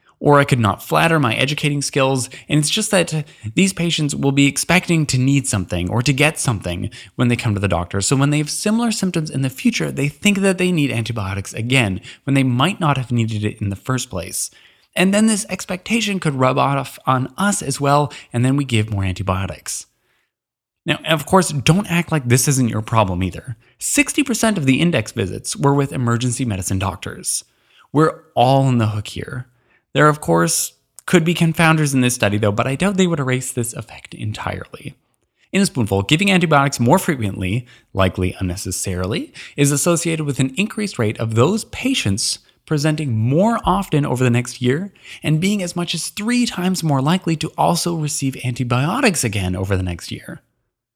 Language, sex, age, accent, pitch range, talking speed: English, male, 20-39, American, 115-165 Hz, 190 wpm